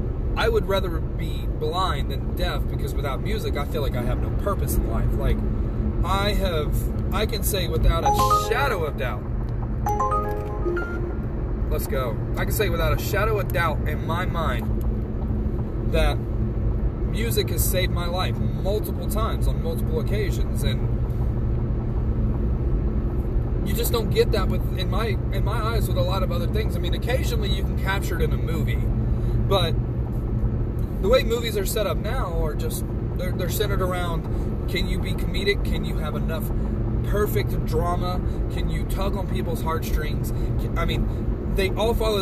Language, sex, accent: English, male, American